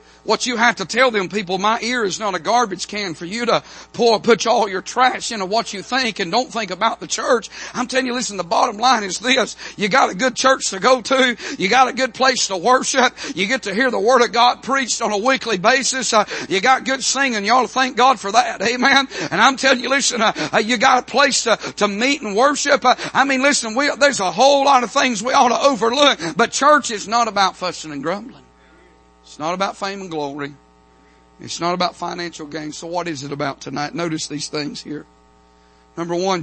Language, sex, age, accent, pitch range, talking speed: English, male, 50-69, American, 155-245 Hz, 235 wpm